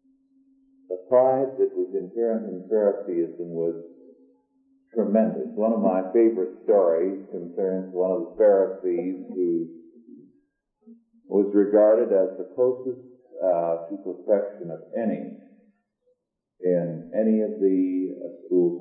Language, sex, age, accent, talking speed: English, male, 50-69, American, 110 wpm